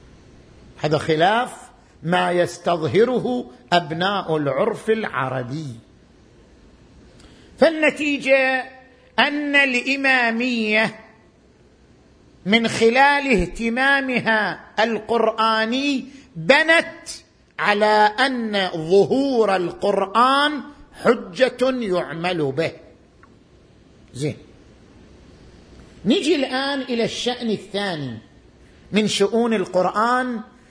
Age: 50-69